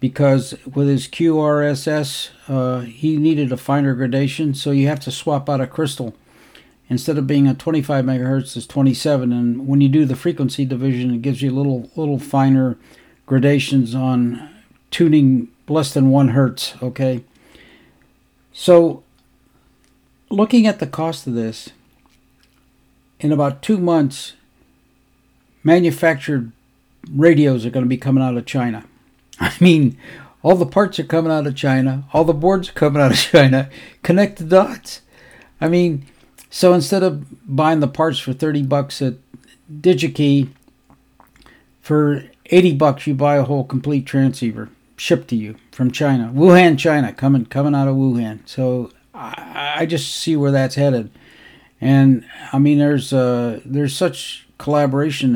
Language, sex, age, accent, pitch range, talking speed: English, male, 60-79, American, 130-155 Hz, 150 wpm